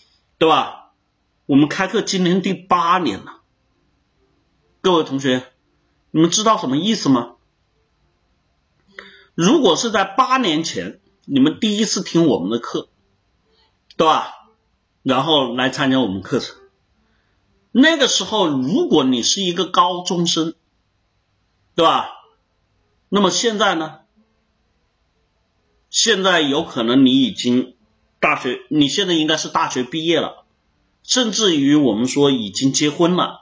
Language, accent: Chinese, native